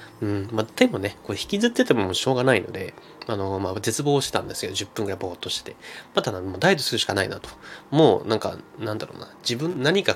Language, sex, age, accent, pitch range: Japanese, male, 20-39, native, 105-150 Hz